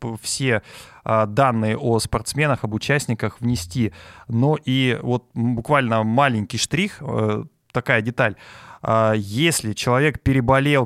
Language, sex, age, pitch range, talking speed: Russian, male, 20-39, 110-140 Hz, 100 wpm